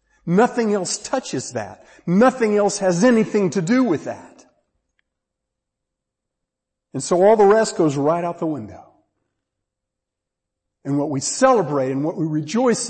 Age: 50-69